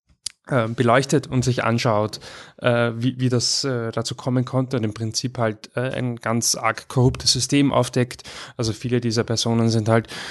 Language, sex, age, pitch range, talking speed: German, male, 20-39, 110-125 Hz, 175 wpm